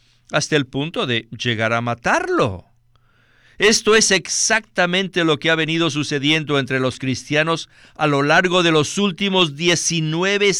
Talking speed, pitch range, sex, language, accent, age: 140 wpm, 120-165 Hz, male, Spanish, Mexican, 50-69